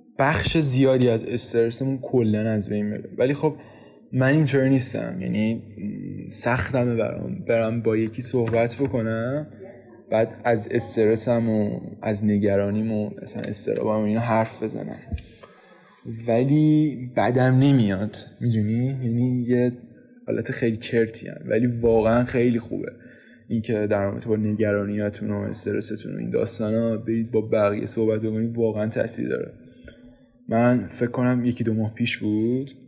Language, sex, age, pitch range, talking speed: Persian, male, 20-39, 110-125 Hz, 125 wpm